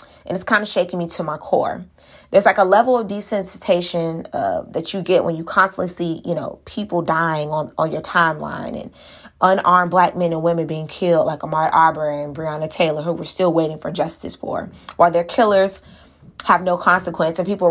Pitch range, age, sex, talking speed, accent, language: 165-205 Hz, 20-39, female, 200 wpm, American, English